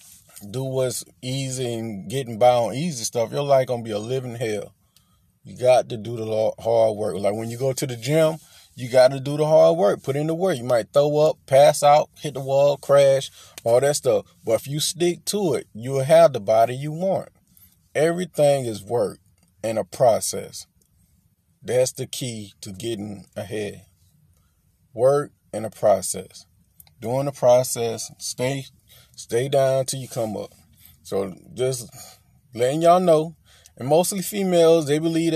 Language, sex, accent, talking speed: English, male, American, 175 wpm